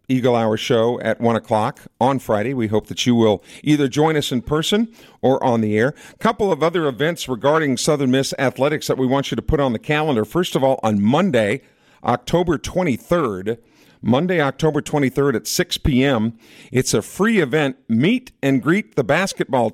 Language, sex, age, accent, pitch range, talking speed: English, male, 50-69, American, 115-155 Hz, 190 wpm